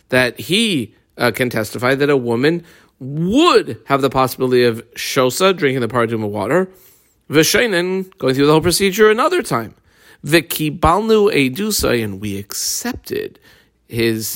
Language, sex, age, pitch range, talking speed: English, male, 40-59, 120-170 Hz, 135 wpm